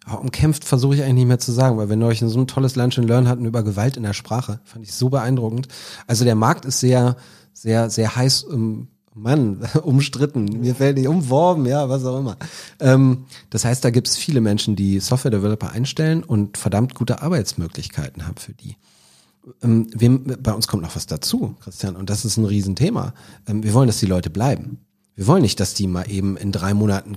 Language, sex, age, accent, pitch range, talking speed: German, male, 40-59, German, 100-130 Hz, 205 wpm